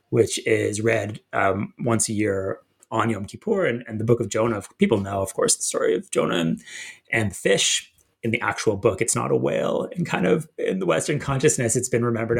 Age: 30-49